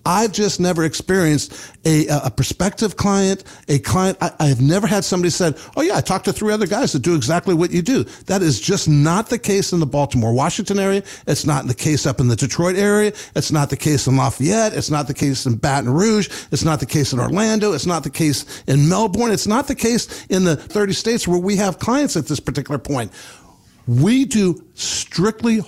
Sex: male